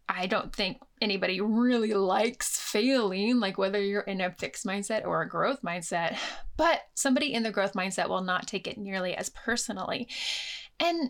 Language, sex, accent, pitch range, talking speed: English, female, American, 205-280 Hz, 175 wpm